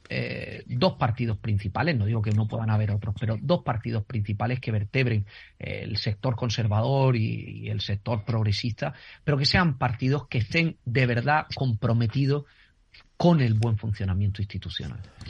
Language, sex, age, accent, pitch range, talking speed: Spanish, male, 40-59, Spanish, 110-140 Hz, 155 wpm